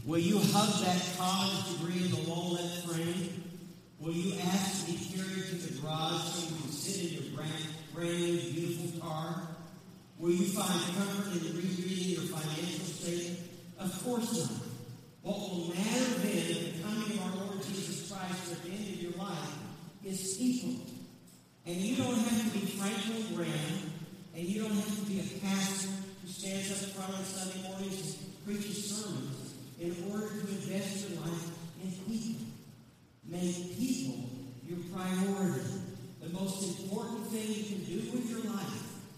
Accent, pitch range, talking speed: American, 155-195 Hz, 170 wpm